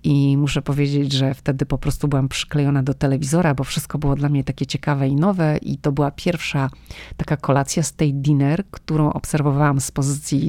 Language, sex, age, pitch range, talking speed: Polish, female, 40-59, 140-155 Hz, 190 wpm